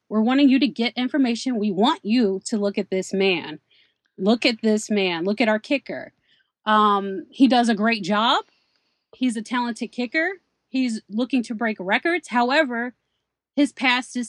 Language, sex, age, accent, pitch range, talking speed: English, female, 30-49, American, 215-270 Hz, 170 wpm